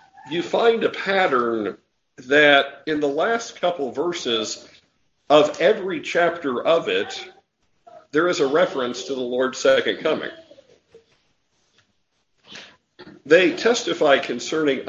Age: 50-69